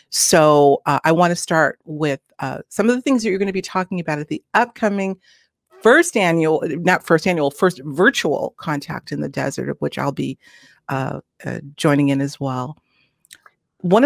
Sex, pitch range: female, 145-180 Hz